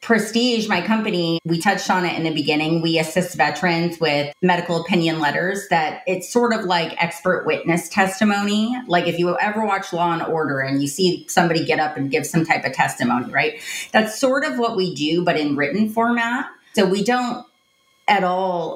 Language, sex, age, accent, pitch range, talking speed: English, female, 30-49, American, 165-215 Hz, 190 wpm